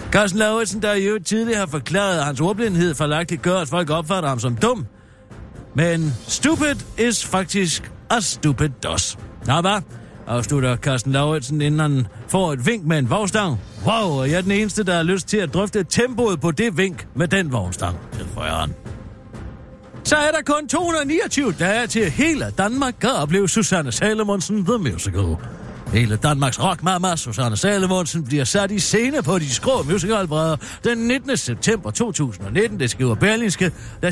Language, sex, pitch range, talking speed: Danish, male, 125-205 Hz, 165 wpm